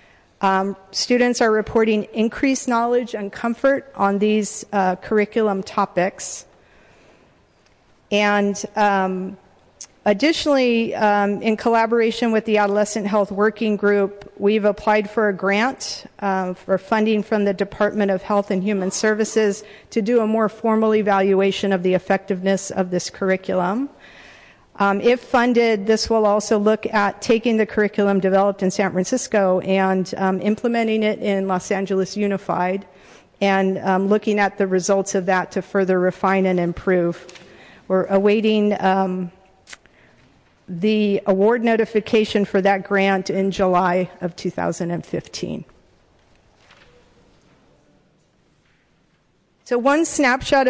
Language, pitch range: English, 190-220 Hz